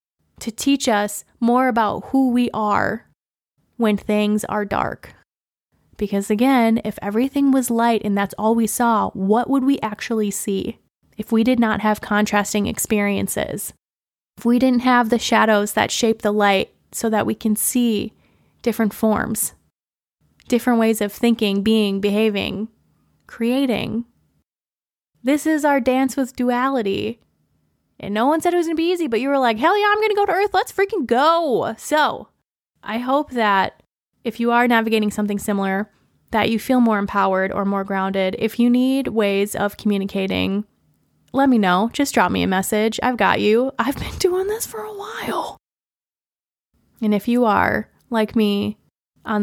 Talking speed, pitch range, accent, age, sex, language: 170 wpm, 205-245 Hz, American, 20-39, female, English